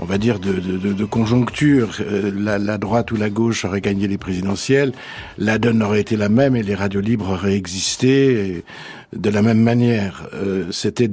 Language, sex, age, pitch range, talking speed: French, male, 60-79, 100-125 Hz, 200 wpm